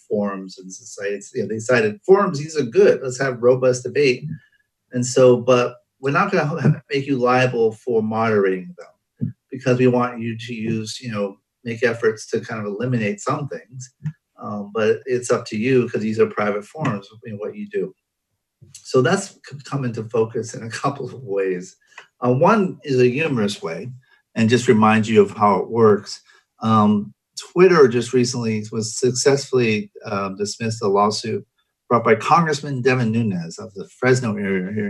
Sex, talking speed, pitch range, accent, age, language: male, 175 wpm, 110-135 Hz, American, 40-59, English